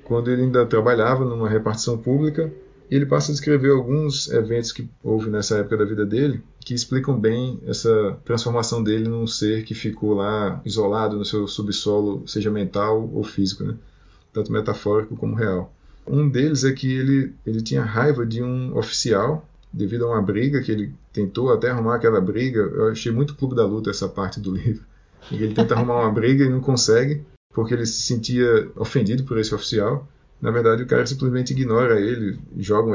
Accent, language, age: Brazilian, Portuguese, 20-39